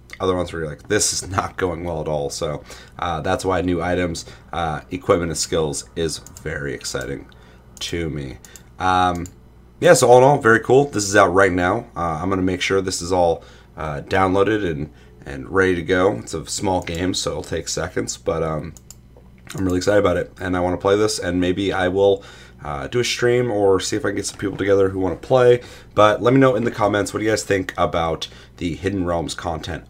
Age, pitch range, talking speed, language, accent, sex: 30-49, 85-100 Hz, 230 wpm, English, American, male